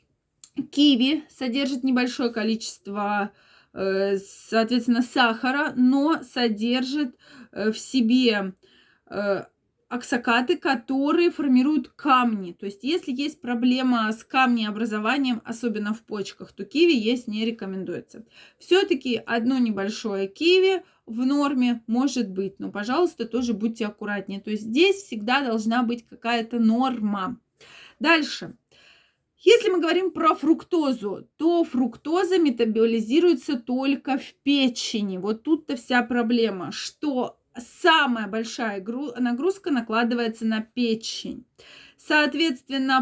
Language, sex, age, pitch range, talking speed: Russian, female, 20-39, 225-285 Hz, 105 wpm